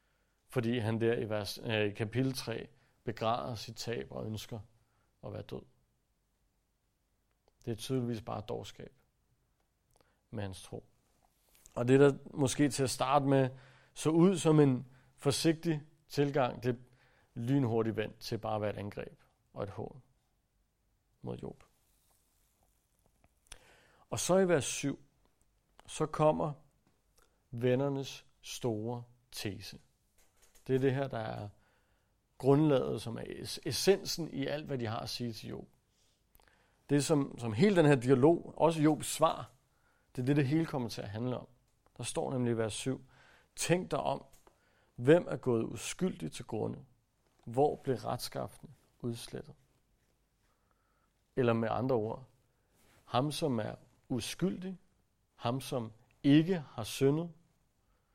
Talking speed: 135 wpm